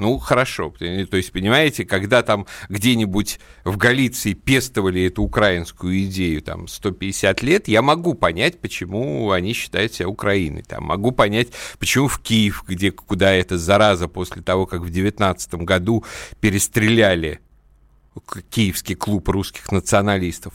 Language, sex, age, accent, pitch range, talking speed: Russian, male, 50-69, native, 90-115 Hz, 135 wpm